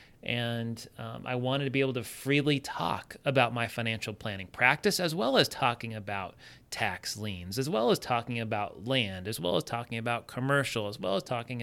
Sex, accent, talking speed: male, American, 195 wpm